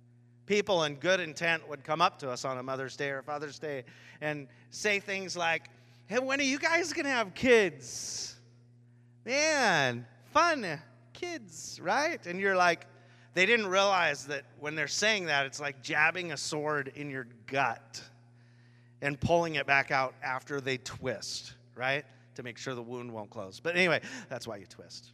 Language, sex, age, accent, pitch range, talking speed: English, male, 30-49, American, 120-175 Hz, 180 wpm